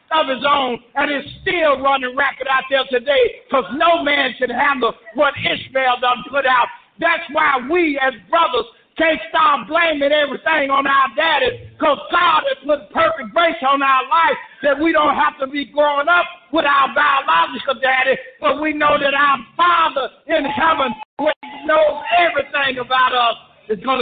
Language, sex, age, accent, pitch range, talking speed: English, male, 50-69, American, 265-320 Hz, 170 wpm